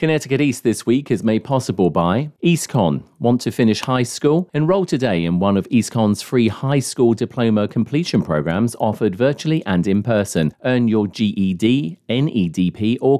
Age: 40-59